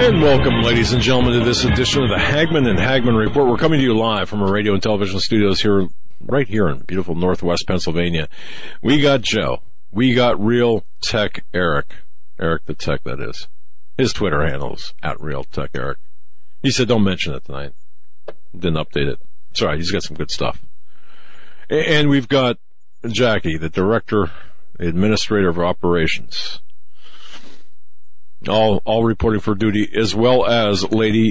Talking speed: 165 wpm